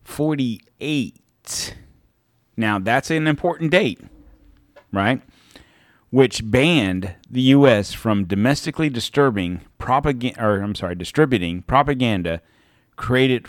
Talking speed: 95 wpm